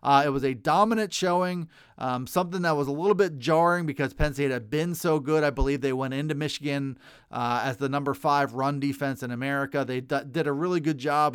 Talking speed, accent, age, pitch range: 220 wpm, American, 30-49, 135-165 Hz